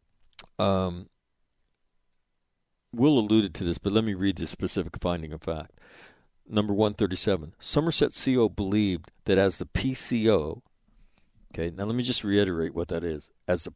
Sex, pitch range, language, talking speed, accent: male, 90-115 Hz, English, 170 wpm, American